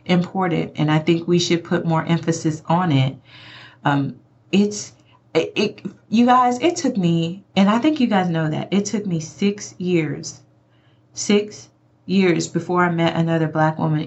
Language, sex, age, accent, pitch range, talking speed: English, female, 30-49, American, 165-220 Hz, 170 wpm